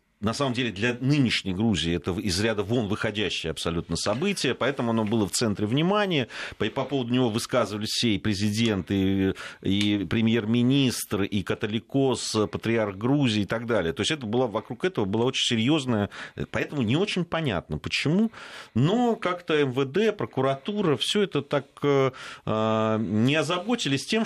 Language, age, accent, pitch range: Russian, 40-59, native, 105-150 Hz